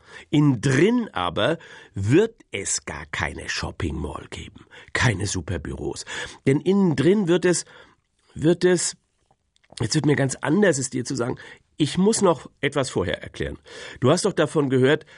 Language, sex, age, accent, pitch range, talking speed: German, male, 50-69, German, 125-165 Hz, 155 wpm